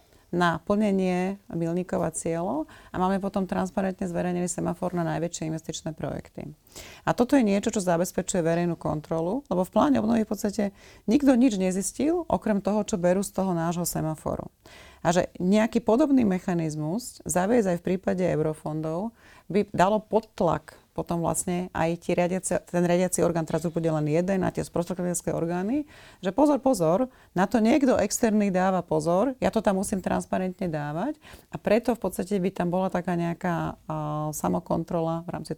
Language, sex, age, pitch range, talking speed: Slovak, female, 30-49, 170-210 Hz, 160 wpm